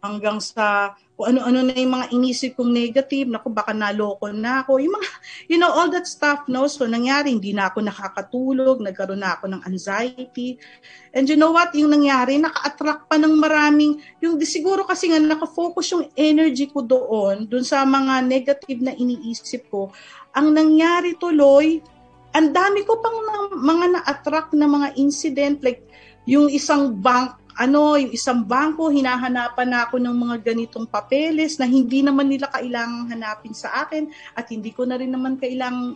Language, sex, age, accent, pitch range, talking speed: Filipino, female, 40-59, native, 215-290 Hz, 170 wpm